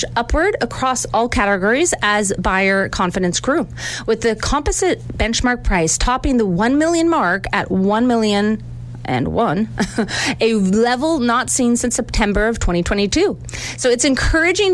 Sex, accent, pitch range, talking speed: female, American, 190-255 Hz, 140 wpm